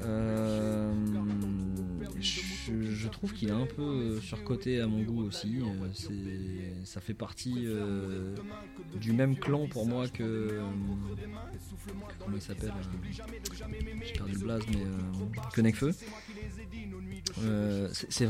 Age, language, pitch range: 20-39, French, 95-115 Hz